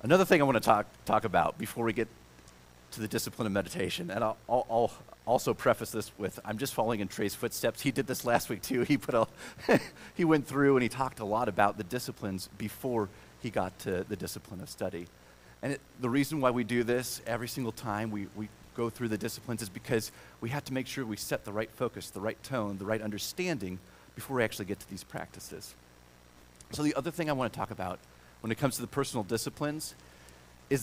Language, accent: English, American